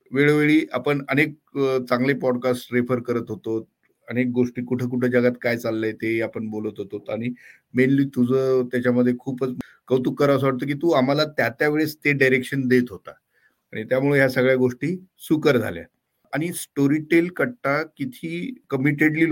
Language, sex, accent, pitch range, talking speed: Marathi, male, native, 120-140 Hz, 55 wpm